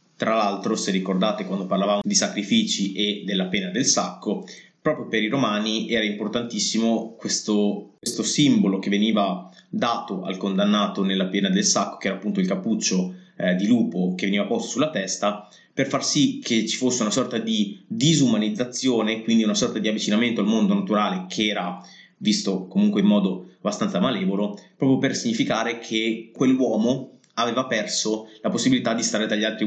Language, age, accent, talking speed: Italian, 20-39, native, 170 wpm